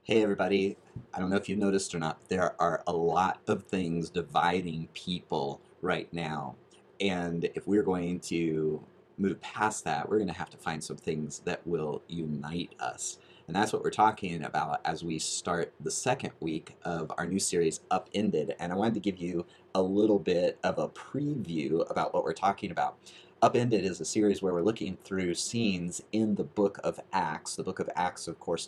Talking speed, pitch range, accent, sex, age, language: 195 wpm, 85-100 Hz, American, male, 30-49, English